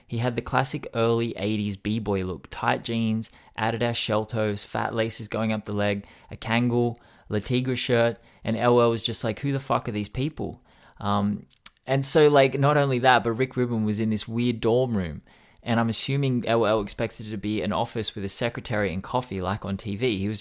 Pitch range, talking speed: 100-125 Hz, 210 wpm